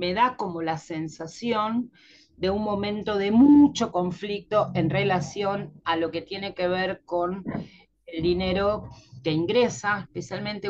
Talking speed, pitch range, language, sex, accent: 140 wpm, 165-225 Hz, Spanish, female, Argentinian